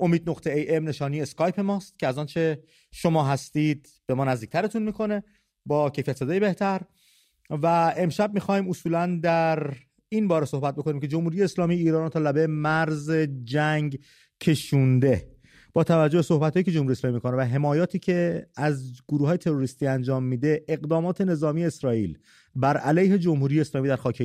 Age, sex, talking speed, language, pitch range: 30-49, male, 165 wpm, English, 145-185 Hz